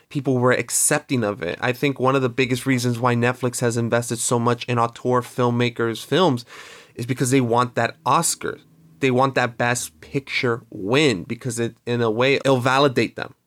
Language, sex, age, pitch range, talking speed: English, male, 30-49, 120-140 Hz, 185 wpm